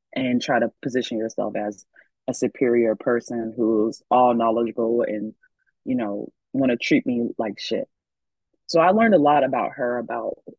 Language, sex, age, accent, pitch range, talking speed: English, female, 20-39, American, 120-145 Hz, 165 wpm